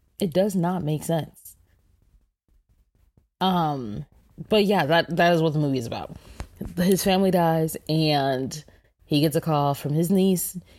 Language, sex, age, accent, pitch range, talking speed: English, female, 20-39, American, 135-175 Hz, 150 wpm